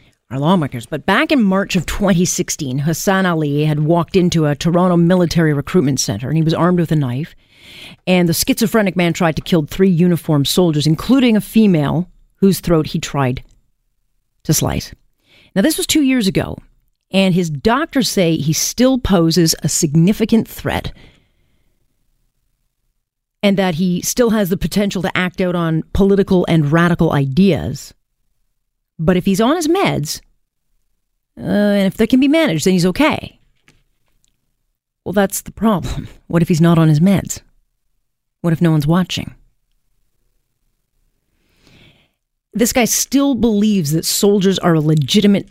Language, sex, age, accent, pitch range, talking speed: English, female, 40-59, American, 160-200 Hz, 155 wpm